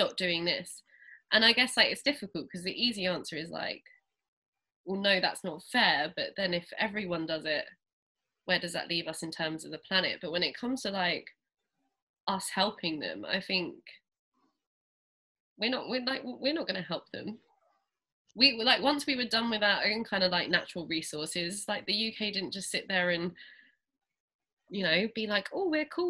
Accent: British